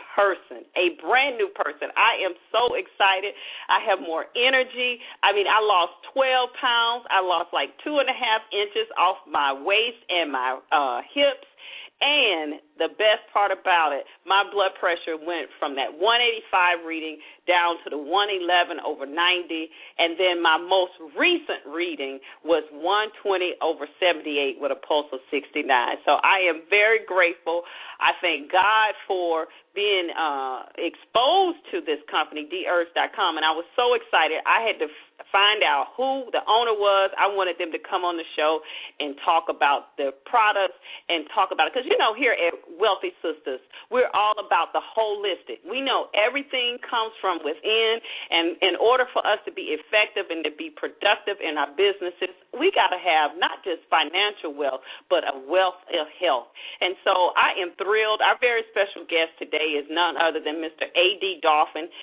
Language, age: English, 40-59